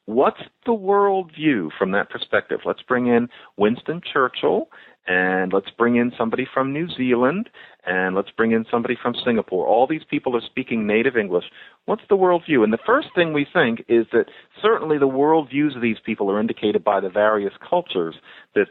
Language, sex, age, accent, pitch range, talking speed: English, male, 40-59, American, 110-160 Hz, 185 wpm